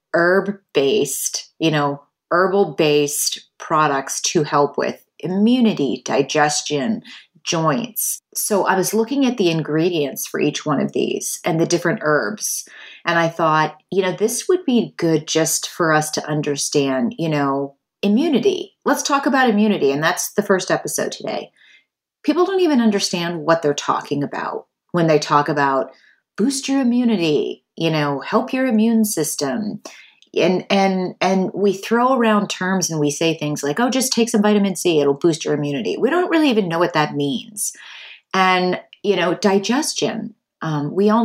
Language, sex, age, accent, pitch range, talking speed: English, female, 30-49, American, 160-230 Hz, 165 wpm